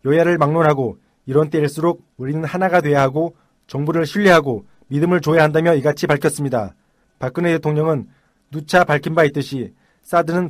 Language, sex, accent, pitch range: Korean, male, native, 150-175 Hz